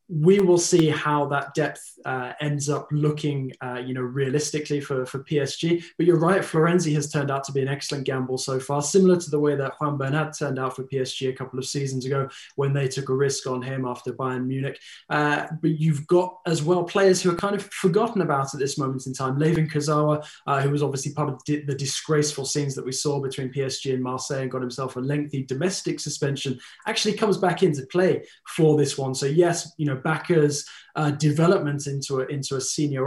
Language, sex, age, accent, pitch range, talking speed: English, male, 20-39, British, 135-155 Hz, 220 wpm